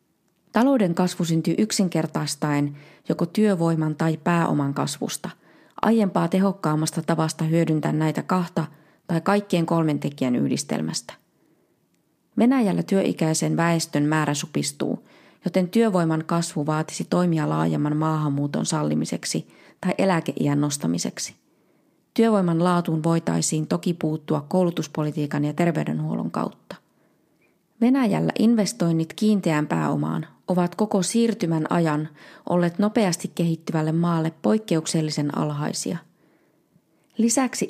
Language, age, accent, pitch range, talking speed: Finnish, 20-39, native, 155-185 Hz, 95 wpm